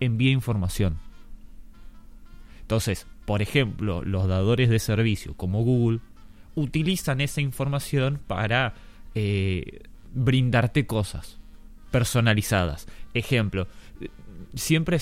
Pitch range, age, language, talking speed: 100-130 Hz, 20-39, Spanish, 85 wpm